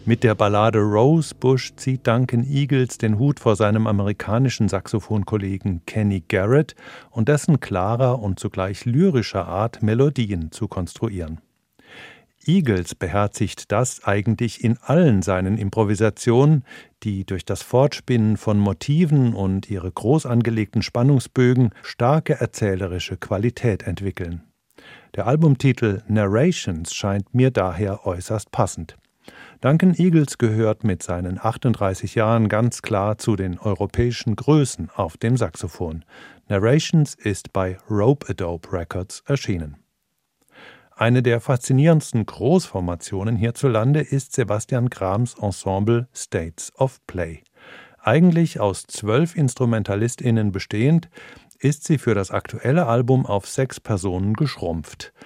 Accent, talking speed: German, 115 wpm